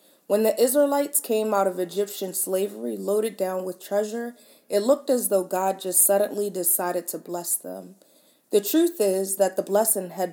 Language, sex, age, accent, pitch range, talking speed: English, female, 20-39, American, 185-225 Hz, 175 wpm